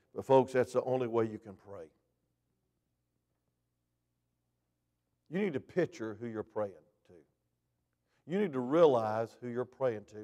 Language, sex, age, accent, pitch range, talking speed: English, male, 50-69, American, 105-150 Hz, 145 wpm